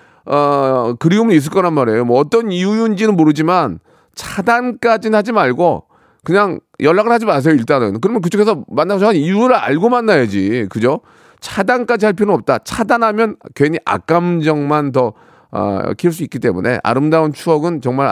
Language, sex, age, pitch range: Korean, male, 40-59, 145-220 Hz